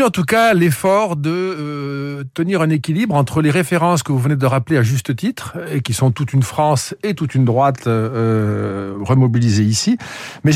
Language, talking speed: French, 195 wpm